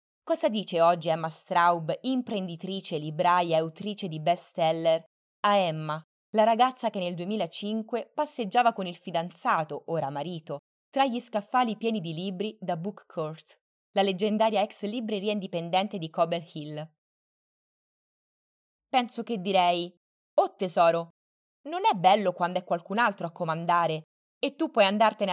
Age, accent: 20-39, native